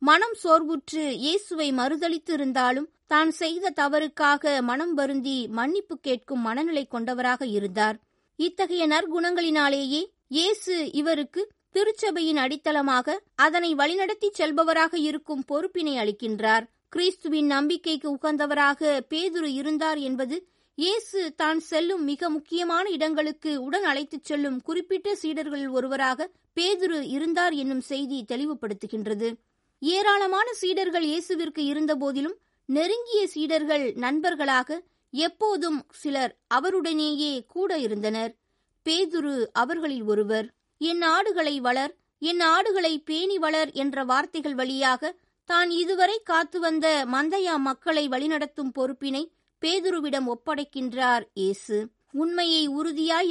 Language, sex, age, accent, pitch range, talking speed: Tamil, female, 20-39, native, 270-335 Hz, 85 wpm